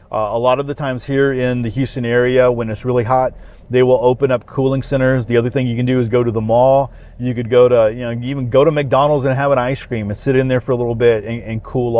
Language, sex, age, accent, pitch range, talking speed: English, male, 30-49, American, 115-130 Hz, 290 wpm